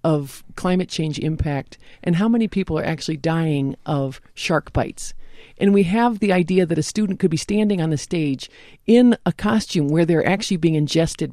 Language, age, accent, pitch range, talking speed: English, 50-69, American, 155-210 Hz, 190 wpm